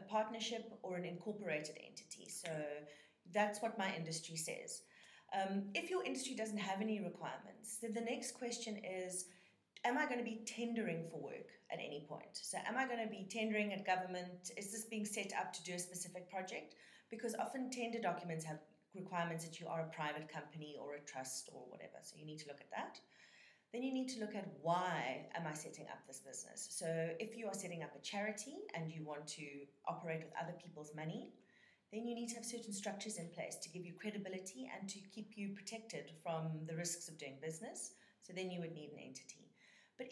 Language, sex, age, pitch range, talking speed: English, female, 30-49, 165-225 Hz, 210 wpm